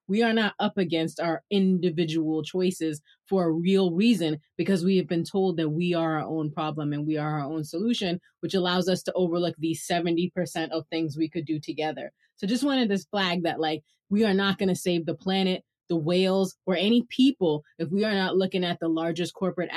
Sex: female